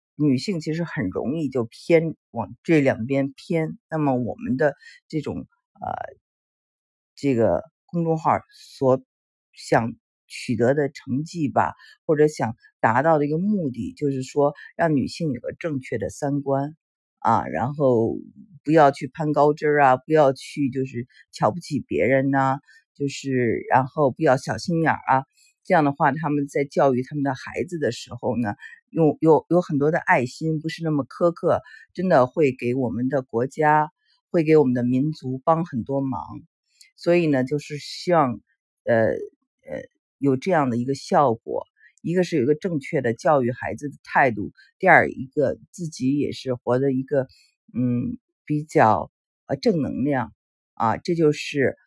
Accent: native